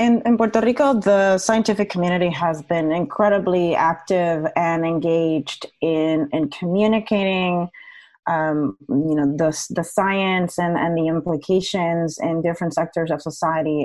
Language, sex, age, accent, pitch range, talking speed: English, female, 30-49, American, 165-195 Hz, 135 wpm